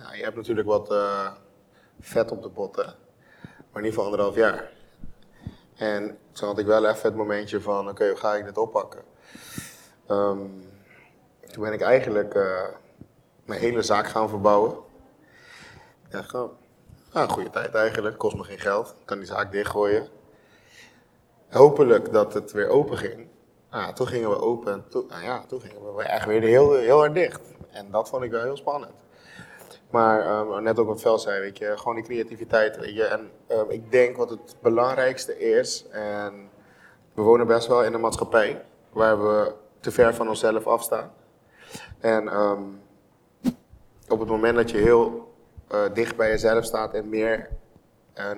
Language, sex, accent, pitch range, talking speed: Dutch, male, Dutch, 105-135 Hz, 175 wpm